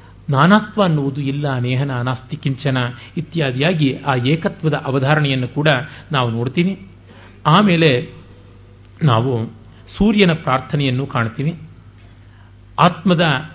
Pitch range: 115-155 Hz